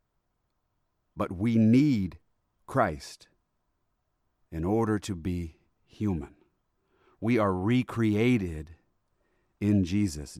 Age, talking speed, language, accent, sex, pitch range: 40-59, 80 wpm, English, American, male, 90-125 Hz